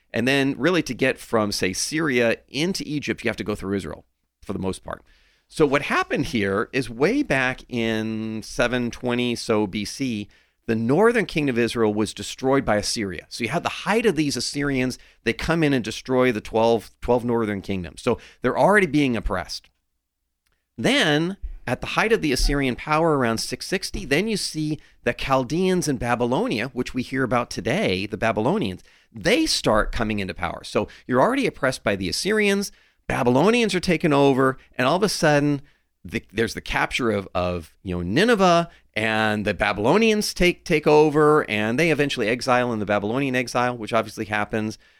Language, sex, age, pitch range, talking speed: English, male, 40-59, 105-150 Hz, 175 wpm